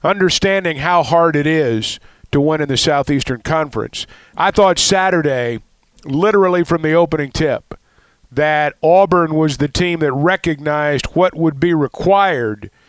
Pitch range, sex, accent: 150-190 Hz, male, American